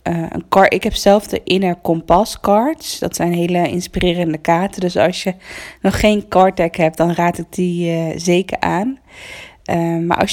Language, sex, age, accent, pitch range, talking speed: Dutch, female, 20-39, Dutch, 170-205 Hz, 185 wpm